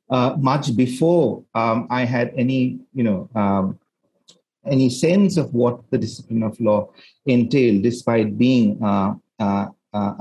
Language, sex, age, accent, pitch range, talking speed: English, male, 50-69, Indian, 115-145 Hz, 135 wpm